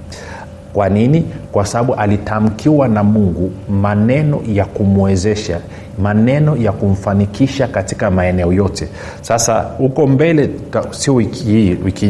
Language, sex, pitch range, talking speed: Swahili, male, 100-120 Hz, 110 wpm